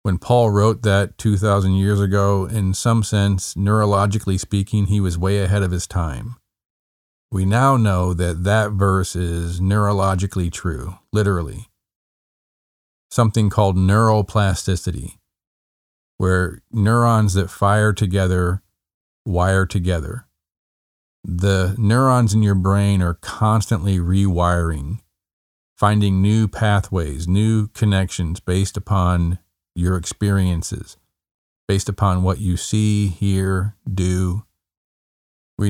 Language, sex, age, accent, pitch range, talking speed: English, male, 40-59, American, 90-105 Hz, 110 wpm